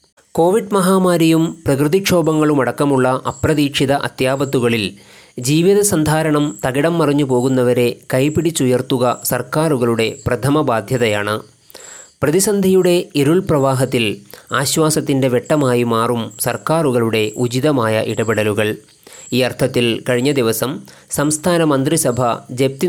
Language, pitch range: Malayalam, 120-155 Hz